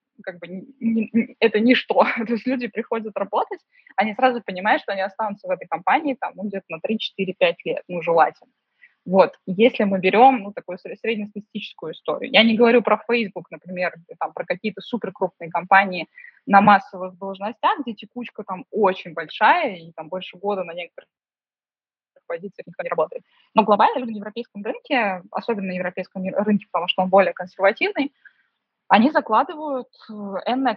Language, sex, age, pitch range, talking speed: Russian, female, 20-39, 185-235 Hz, 160 wpm